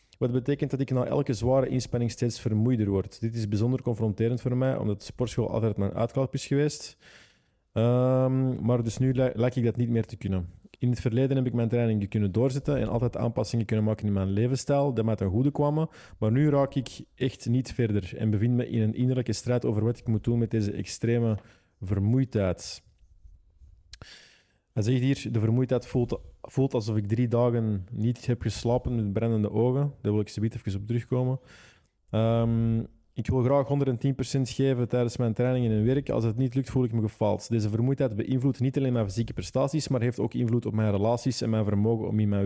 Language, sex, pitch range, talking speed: English, male, 110-130 Hz, 205 wpm